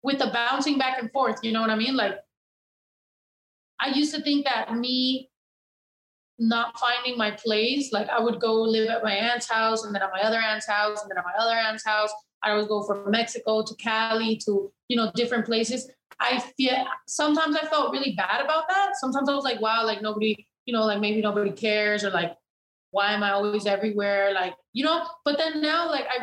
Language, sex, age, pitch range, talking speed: English, female, 20-39, 200-255 Hz, 215 wpm